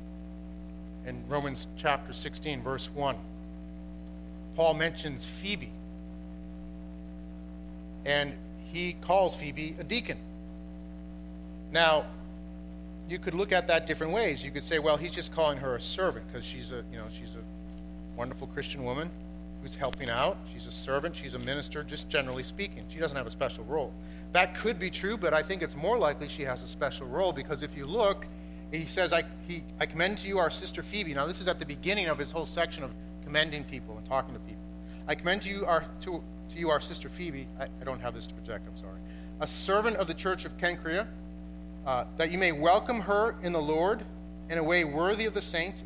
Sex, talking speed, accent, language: male, 200 wpm, American, English